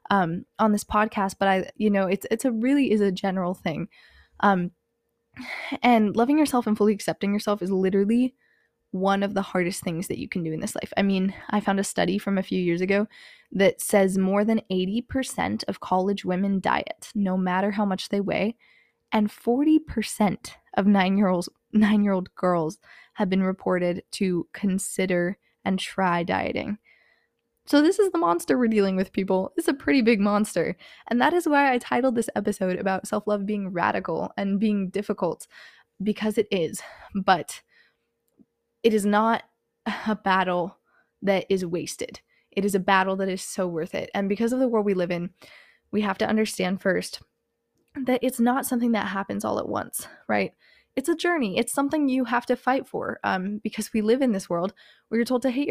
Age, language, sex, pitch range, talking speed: 20-39, English, female, 190-230 Hz, 195 wpm